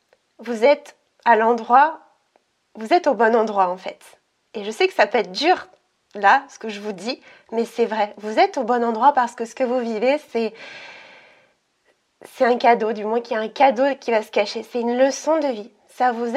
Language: French